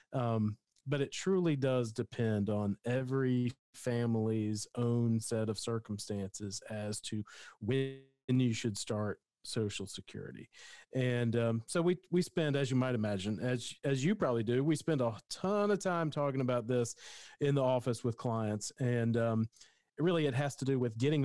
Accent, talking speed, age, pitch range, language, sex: American, 170 wpm, 40-59, 110-135 Hz, English, male